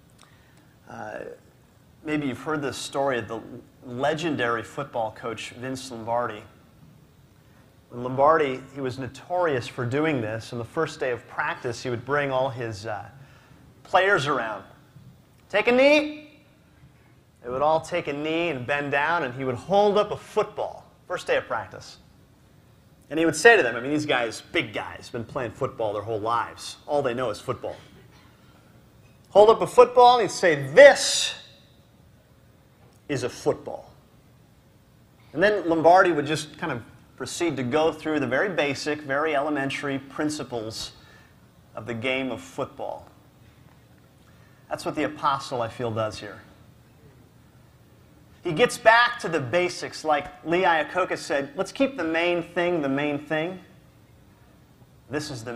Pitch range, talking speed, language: 120-165 Hz, 155 wpm, English